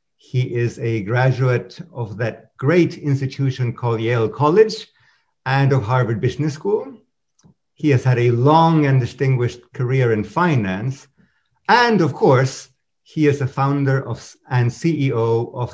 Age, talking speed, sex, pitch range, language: 50-69, 135 wpm, male, 115-150 Hz, English